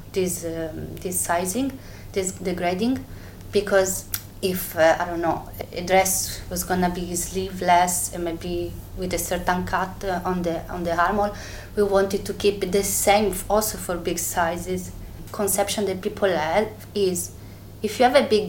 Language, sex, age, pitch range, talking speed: French, female, 20-39, 160-190 Hz, 170 wpm